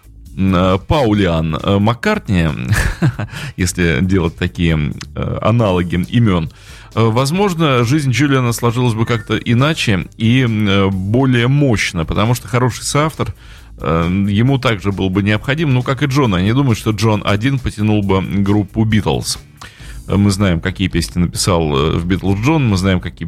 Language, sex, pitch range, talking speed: Russian, male, 95-120 Hz, 130 wpm